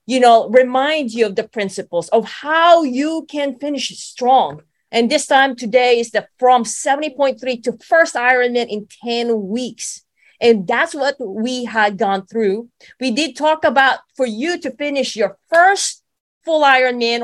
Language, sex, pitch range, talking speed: English, female, 225-285 Hz, 160 wpm